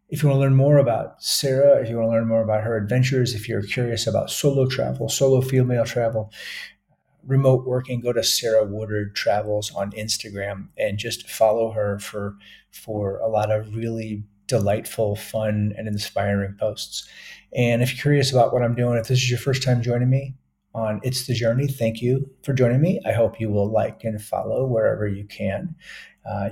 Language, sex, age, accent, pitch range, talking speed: English, male, 40-59, American, 105-120 Hz, 195 wpm